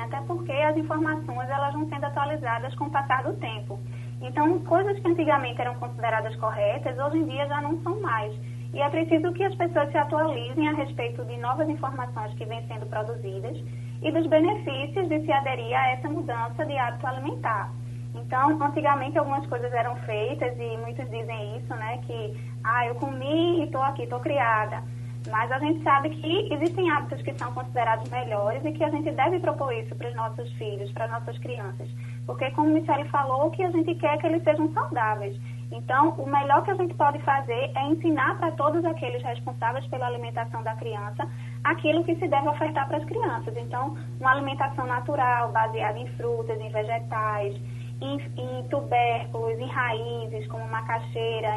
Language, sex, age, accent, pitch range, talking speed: Portuguese, female, 20-39, Brazilian, 115-145 Hz, 185 wpm